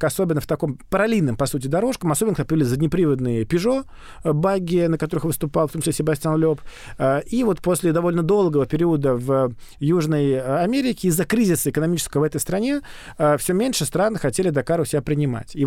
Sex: male